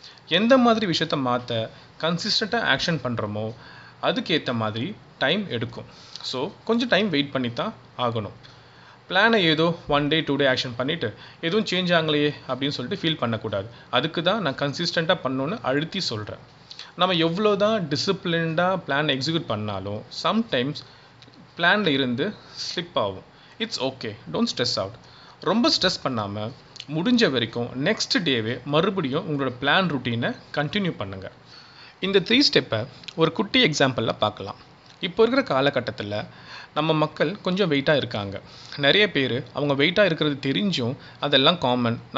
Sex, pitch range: male, 125-175 Hz